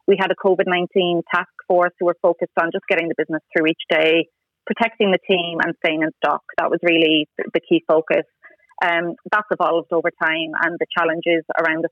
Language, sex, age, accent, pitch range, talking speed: English, female, 30-49, Irish, 170-195 Hz, 200 wpm